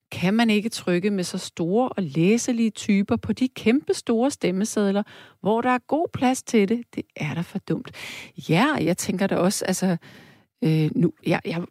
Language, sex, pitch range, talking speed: Danish, female, 170-235 Hz, 190 wpm